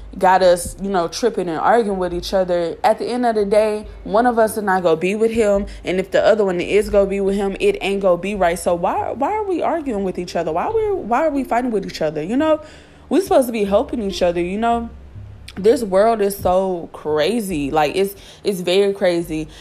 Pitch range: 175-225 Hz